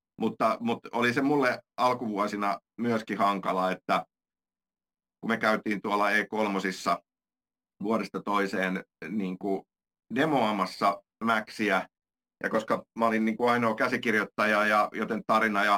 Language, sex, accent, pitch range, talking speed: Finnish, male, native, 100-115 Hz, 120 wpm